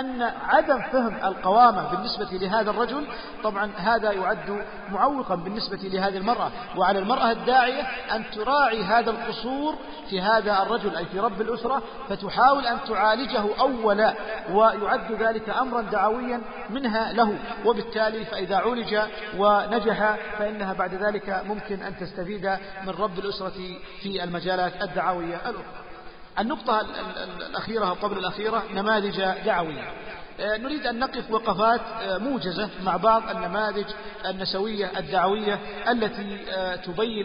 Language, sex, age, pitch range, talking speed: Arabic, male, 50-69, 195-230 Hz, 120 wpm